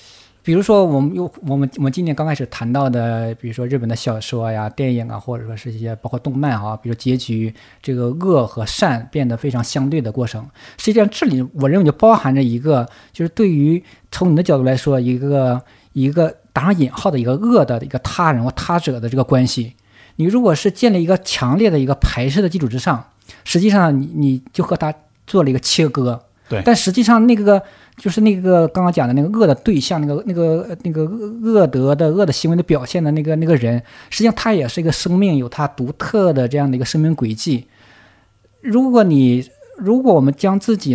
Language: Chinese